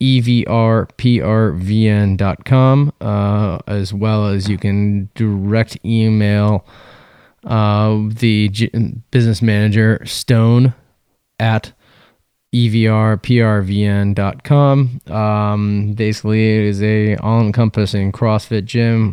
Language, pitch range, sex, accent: English, 105-115 Hz, male, American